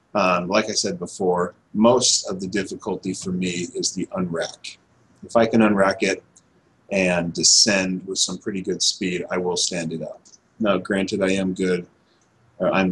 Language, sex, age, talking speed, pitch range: English, male, 30-49, 170 wpm, 90-110 Hz